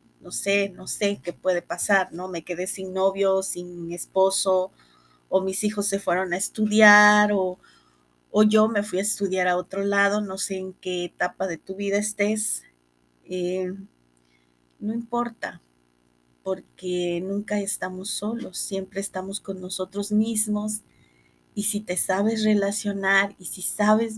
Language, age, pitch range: Spanish, 30-49, 180-205 Hz